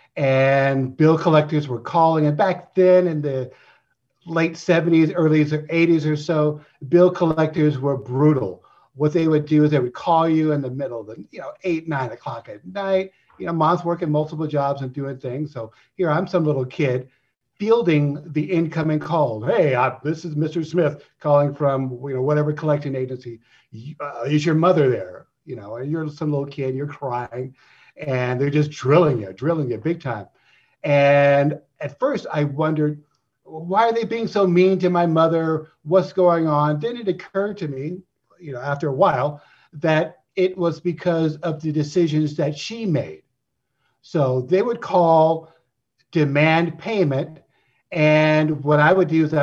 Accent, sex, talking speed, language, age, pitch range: American, male, 175 wpm, English, 50-69, 140-165 Hz